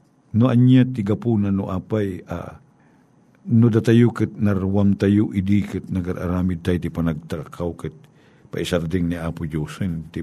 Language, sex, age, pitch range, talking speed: Filipino, male, 50-69, 85-110 Hz, 145 wpm